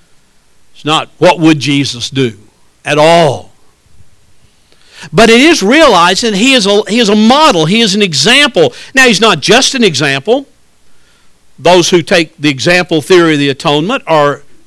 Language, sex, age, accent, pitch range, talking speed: English, male, 60-79, American, 170-255 Hz, 150 wpm